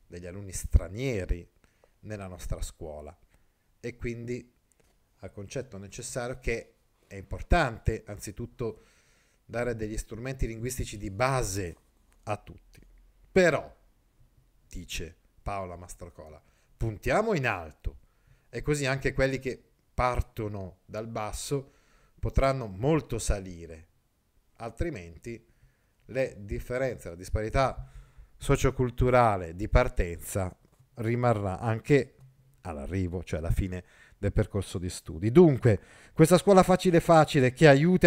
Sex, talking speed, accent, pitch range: male, 100 wpm, native, 95-140 Hz